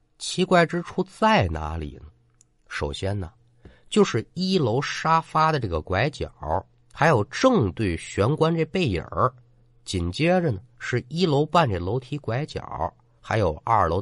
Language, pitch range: Chinese, 95-150 Hz